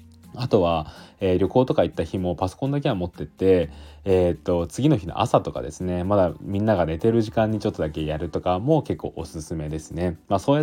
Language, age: Japanese, 20-39